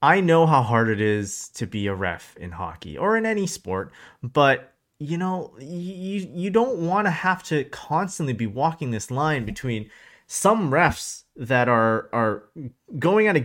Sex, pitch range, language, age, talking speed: male, 115-170 Hz, English, 30-49, 180 wpm